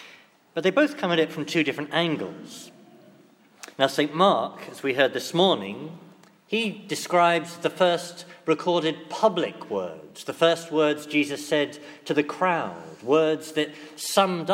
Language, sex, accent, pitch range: English, male, British, 150-185 Hz